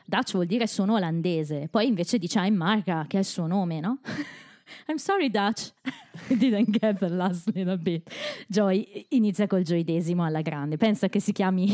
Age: 20-39